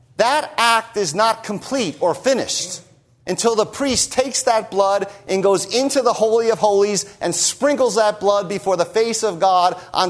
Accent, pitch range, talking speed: American, 125-200 Hz, 180 wpm